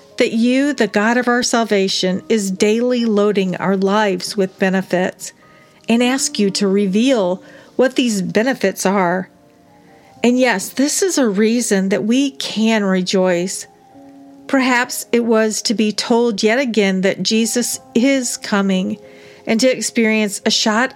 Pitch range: 190-240 Hz